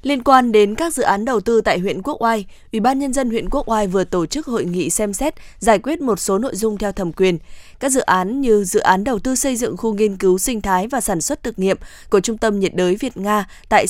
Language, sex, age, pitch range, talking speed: Vietnamese, female, 20-39, 195-240 Hz, 270 wpm